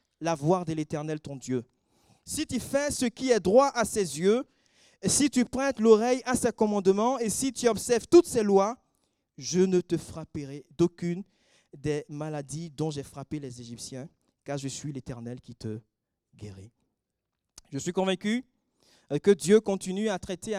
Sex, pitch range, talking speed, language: male, 150-225 Hz, 165 wpm, French